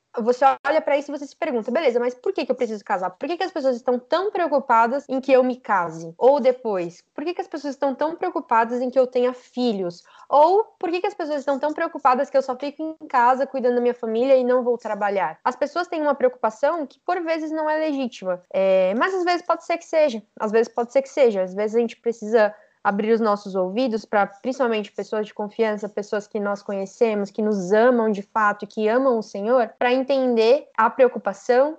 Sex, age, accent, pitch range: female, 10-29, Brazilian, 215-280 Hz